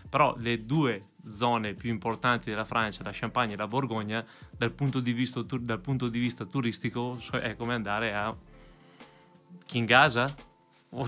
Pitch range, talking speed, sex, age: 110-130 Hz, 160 wpm, male, 20-39